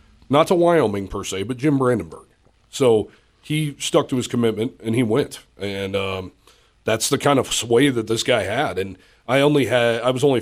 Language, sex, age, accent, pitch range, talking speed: English, male, 30-49, American, 105-125 Hz, 195 wpm